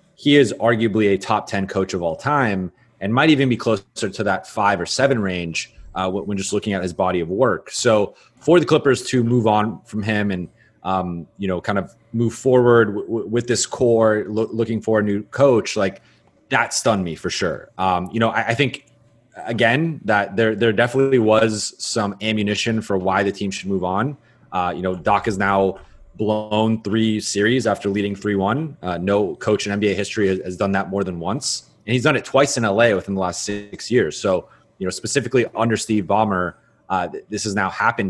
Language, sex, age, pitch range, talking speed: English, male, 30-49, 95-115 Hz, 215 wpm